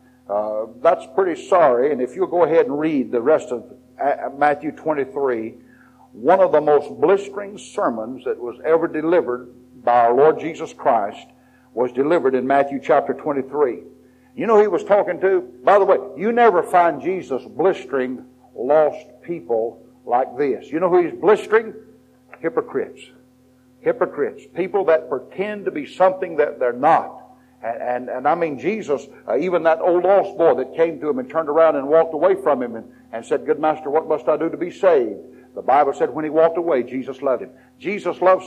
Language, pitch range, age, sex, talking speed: English, 130-205 Hz, 60-79, male, 190 wpm